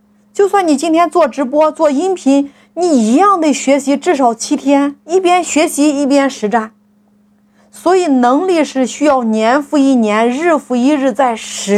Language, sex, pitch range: Chinese, female, 210-280 Hz